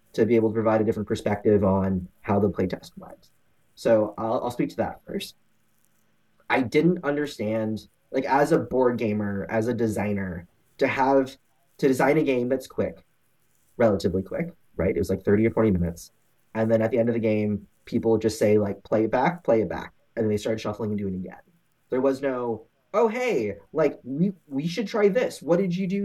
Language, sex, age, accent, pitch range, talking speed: English, male, 20-39, American, 110-165 Hz, 210 wpm